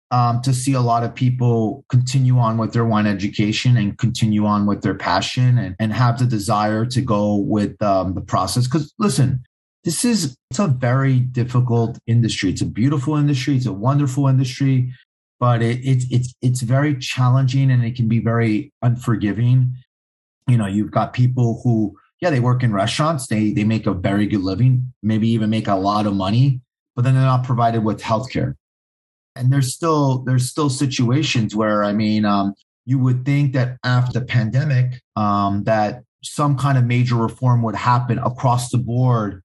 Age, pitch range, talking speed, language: 30-49, 110-135 Hz, 185 wpm, English